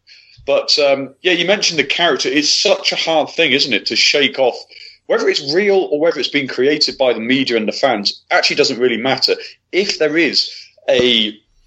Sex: male